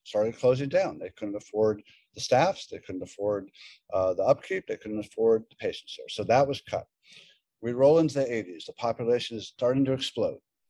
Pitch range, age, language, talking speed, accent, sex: 110-135 Hz, 50-69, English, 195 wpm, American, male